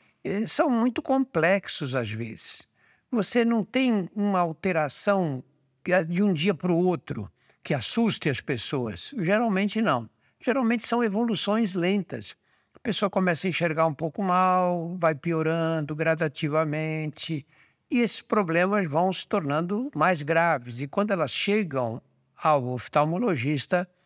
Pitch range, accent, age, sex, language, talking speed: 145-210 Hz, Brazilian, 60-79, male, Portuguese, 125 wpm